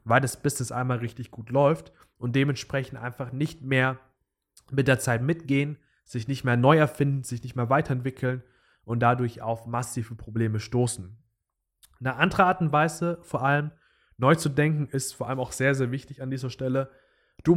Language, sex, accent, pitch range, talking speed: German, male, German, 115-135 Hz, 180 wpm